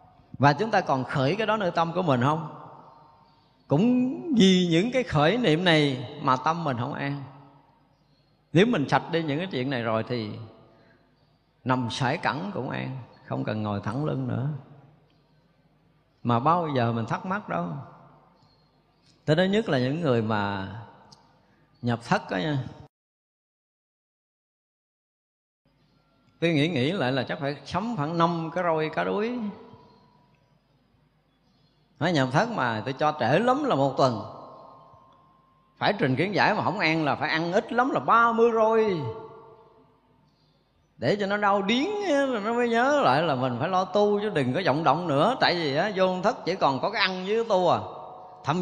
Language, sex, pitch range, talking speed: Vietnamese, male, 140-195 Hz, 175 wpm